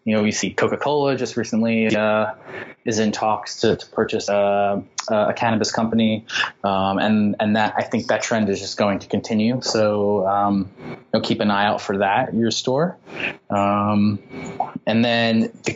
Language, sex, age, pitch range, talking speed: English, male, 20-39, 105-120 Hz, 185 wpm